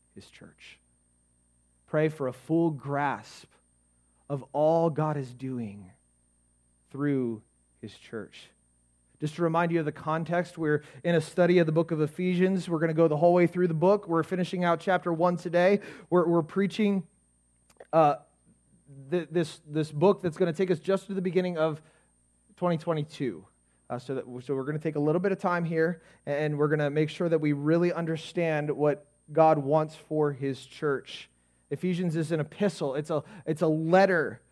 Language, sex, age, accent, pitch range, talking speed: English, male, 30-49, American, 145-185 Hz, 185 wpm